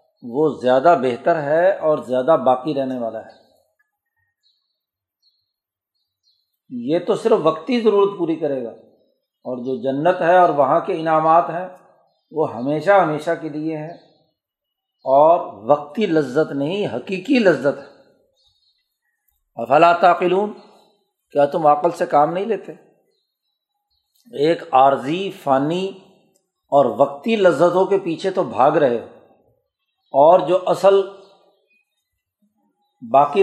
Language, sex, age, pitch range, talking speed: Urdu, male, 50-69, 145-190 Hz, 115 wpm